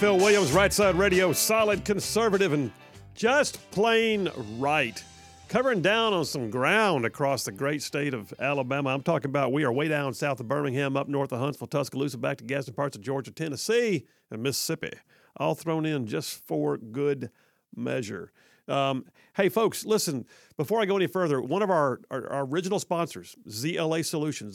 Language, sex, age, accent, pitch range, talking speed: English, male, 50-69, American, 135-170 Hz, 175 wpm